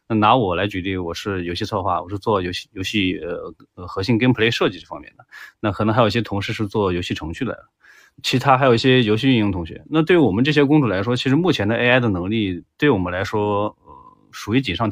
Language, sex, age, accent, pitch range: Chinese, male, 20-39, native, 95-120 Hz